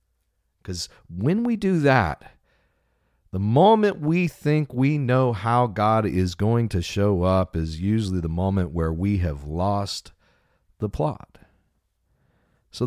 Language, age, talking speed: English, 40-59, 135 wpm